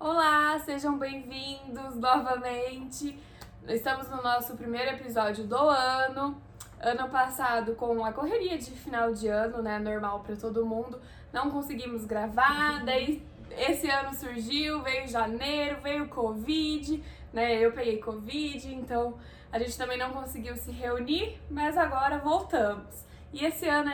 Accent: Brazilian